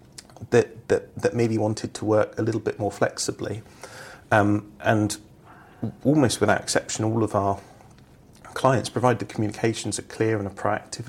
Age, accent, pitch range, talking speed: 40-59, British, 100-115 Hz, 155 wpm